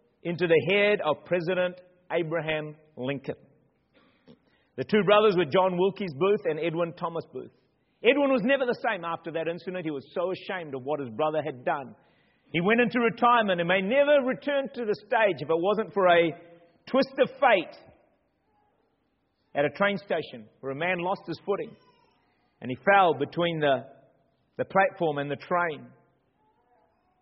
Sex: male